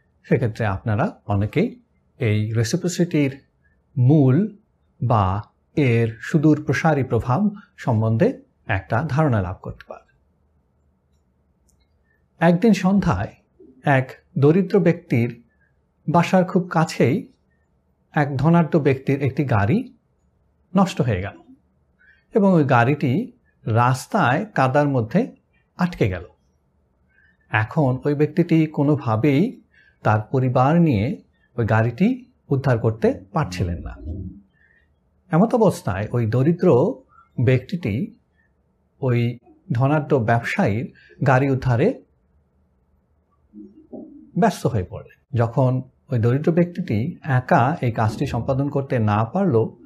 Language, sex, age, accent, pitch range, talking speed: Bengali, male, 60-79, native, 105-160 Hz, 95 wpm